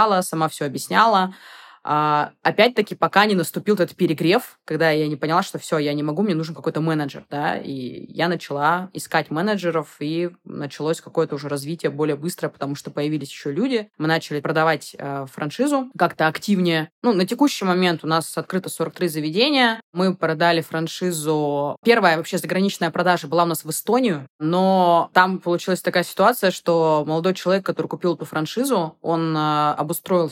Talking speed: 165 wpm